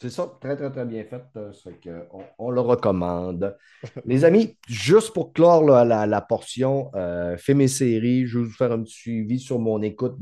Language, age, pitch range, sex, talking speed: French, 30-49, 105-140 Hz, male, 215 wpm